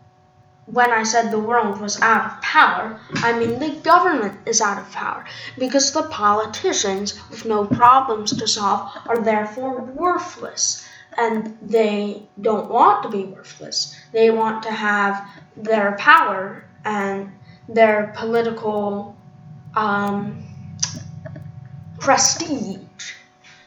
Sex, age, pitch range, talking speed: female, 10-29, 205-245 Hz, 115 wpm